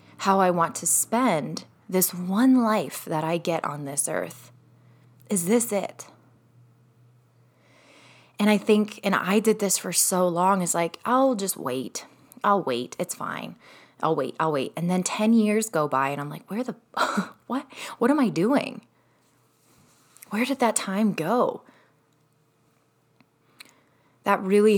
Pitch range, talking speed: 150-195 Hz, 155 wpm